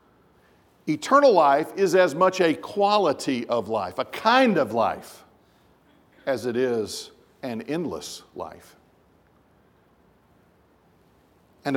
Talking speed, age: 100 wpm, 50-69